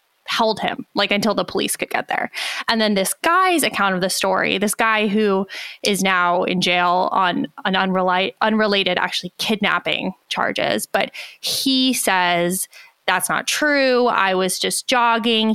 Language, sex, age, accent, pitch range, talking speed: English, female, 20-39, American, 190-245 Hz, 160 wpm